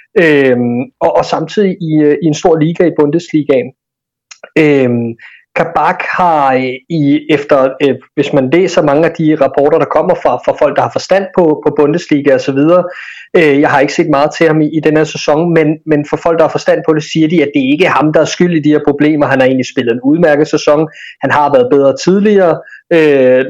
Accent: native